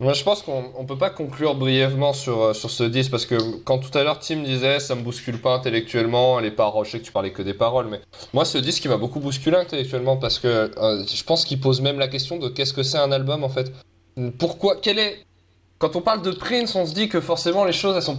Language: French